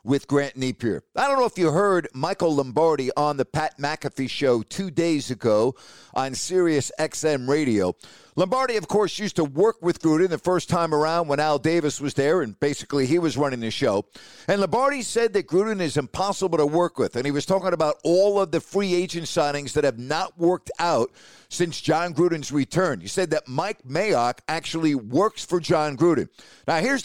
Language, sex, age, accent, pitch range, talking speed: English, male, 50-69, American, 145-185 Hz, 195 wpm